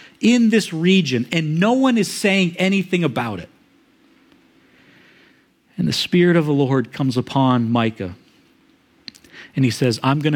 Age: 50-69